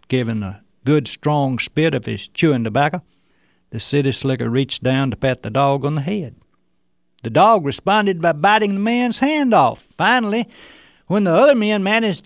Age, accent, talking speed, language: 60-79, American, 175 wpm, English